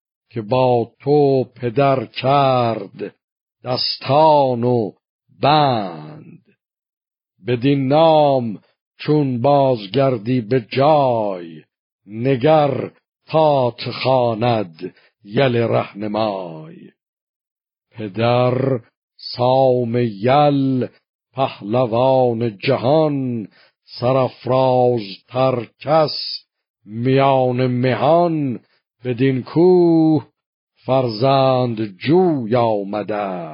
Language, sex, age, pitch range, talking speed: Persian, male, 60-79, 115-140 Hz, 60 wpm